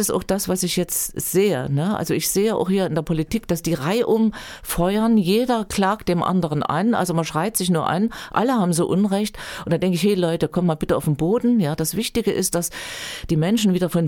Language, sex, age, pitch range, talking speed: German, female, 40-59, 155-185 Hz, 230 wpm